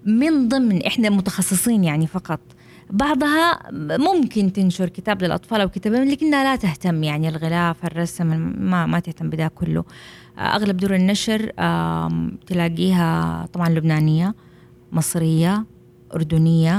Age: 20-39